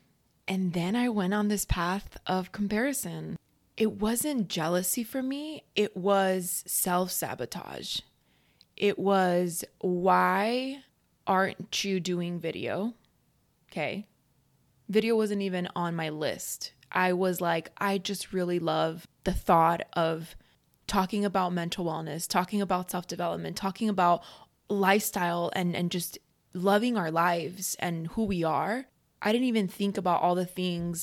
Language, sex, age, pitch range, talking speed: English, female, 20-39, 170-210 Hz, 135 wpm